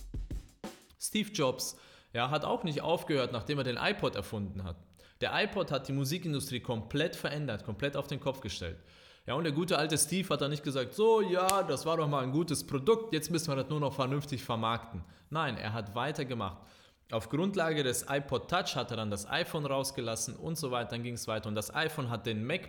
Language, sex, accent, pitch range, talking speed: German, male, German, 120-160 Hz, 205 wpm